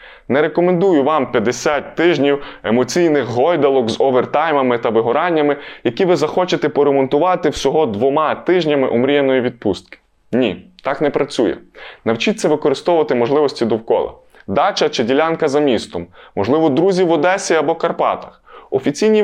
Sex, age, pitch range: male, 20-39, 140-180 Hz